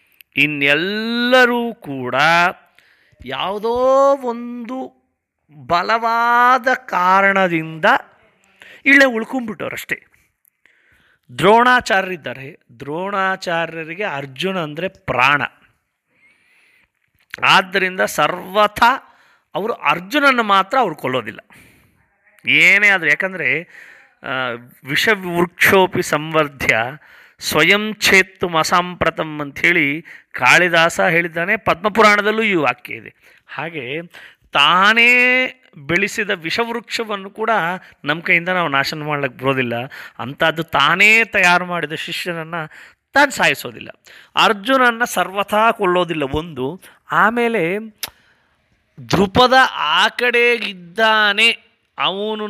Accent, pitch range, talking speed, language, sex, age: native, 160-225 Hz, 70 wpm, Kannada, male, 30-49